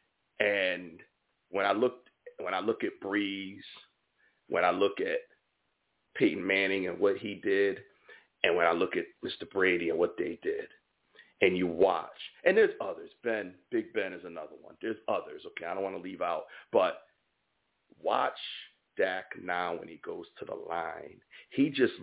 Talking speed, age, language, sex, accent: 170 wpm, 40-59, English, male, American